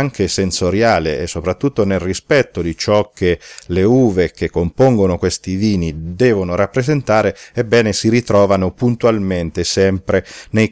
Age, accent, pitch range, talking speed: 40-59, native, 90-115 Hz, 130 wpm